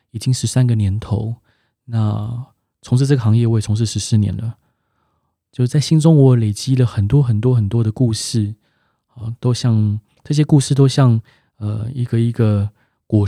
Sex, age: male, 20-39